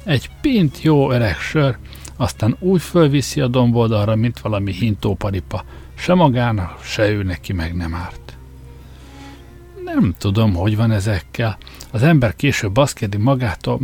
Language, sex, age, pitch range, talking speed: Hungarian, male, 60-79, 100-135 Hz, 135 wpm